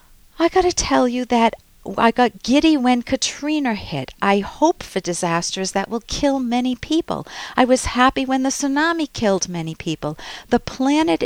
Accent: American